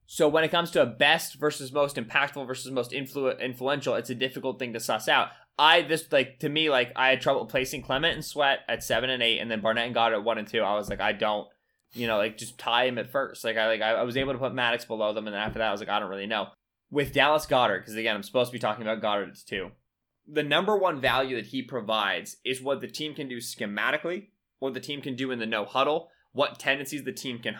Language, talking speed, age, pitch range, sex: English, 270 wpm, 20-39, 115-140 Hz, male